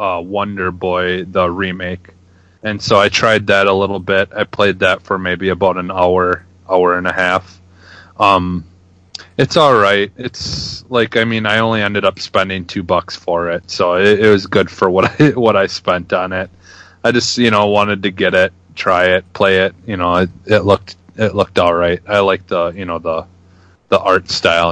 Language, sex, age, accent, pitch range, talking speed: English, male, 30-49, American, 90-105 Hz, 205 wpm